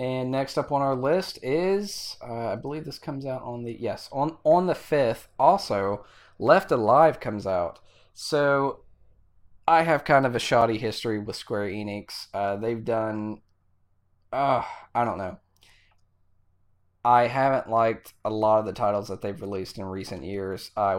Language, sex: English, male